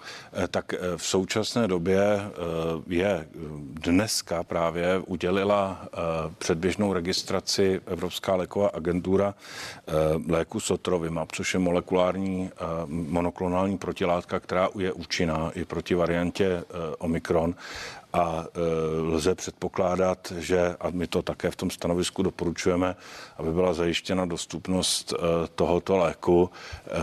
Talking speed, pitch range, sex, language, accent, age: 100 wpm, 85-90 Hz, male, Czech, native, 50-69